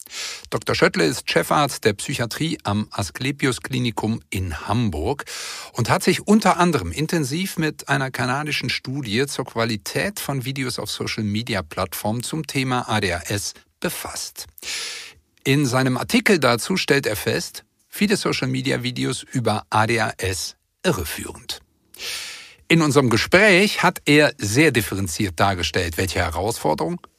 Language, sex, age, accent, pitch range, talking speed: German, male, 50-69, German, 105-150 Hz, 115 wpm